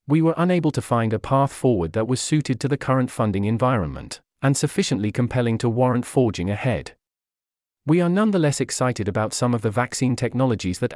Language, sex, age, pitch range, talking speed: English, male, 40-59, 110-140 Hz, 185 wpm